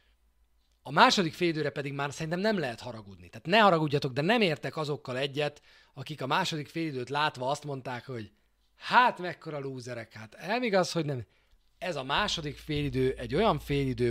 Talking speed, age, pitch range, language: 170 wpm, 30-49, 115-160 Hz, Hungarian